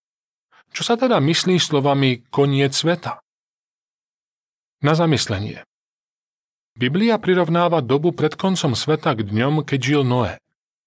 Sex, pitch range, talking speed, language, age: male, 120-165 Hz, 110 wpm, Slovak, 40-59